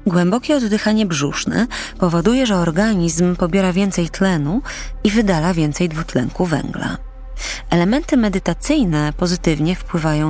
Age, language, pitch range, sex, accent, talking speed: 20-39, Polish, 155-195 Hz, female, native, 105 wpm